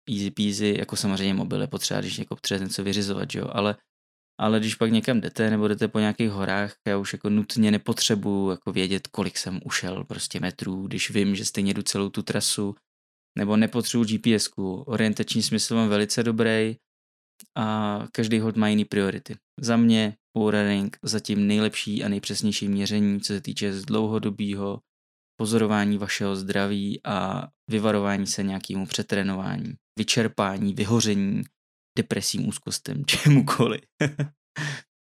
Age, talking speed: 20-39, 140 wpm